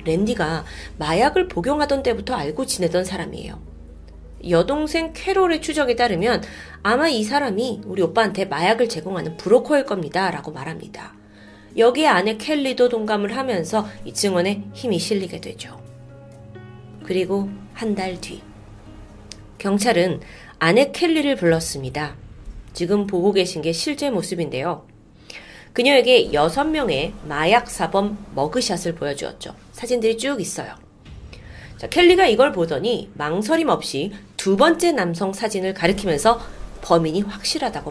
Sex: female